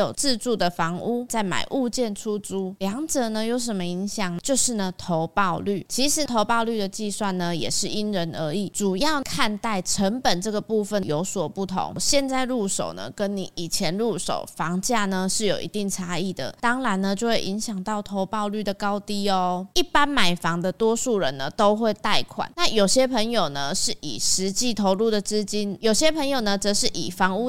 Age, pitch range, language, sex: 20-39, 185-225 Hz, Chinese, female